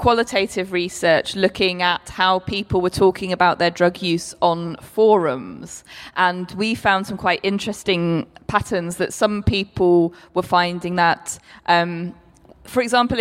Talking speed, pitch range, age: 135 wpm, 165-190 Hz, 20-39